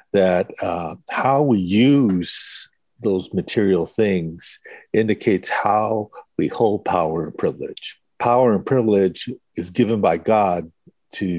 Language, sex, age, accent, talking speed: English, male, 60-79, American, 120 wpm